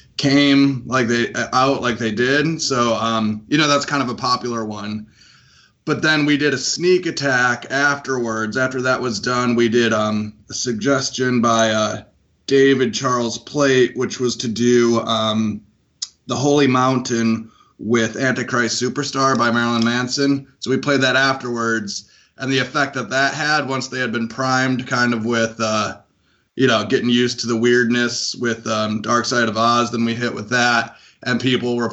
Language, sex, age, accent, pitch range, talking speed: English, male, 20-39, American, 115-135 Hz, 175 wpm